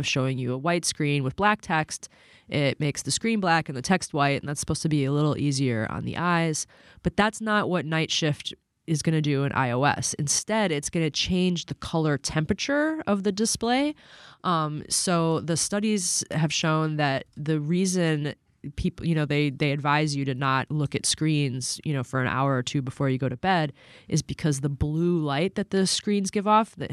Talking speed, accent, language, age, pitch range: 210 wpm, American, English, 20-39, 140-170 Hz